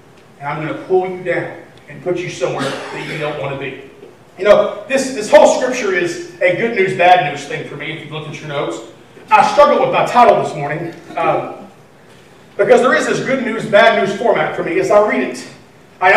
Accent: American